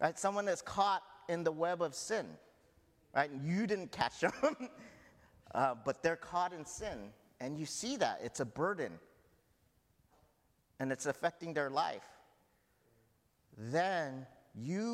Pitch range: 135-190 Hz